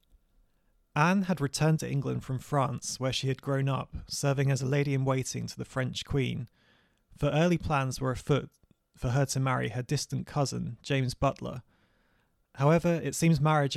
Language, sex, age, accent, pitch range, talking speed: English, male, 20-39, British, 125-140 Hz, 165 wpm